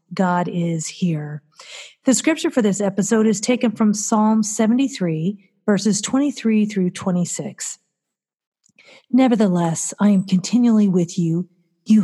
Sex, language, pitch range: female, English, 175-230 Hz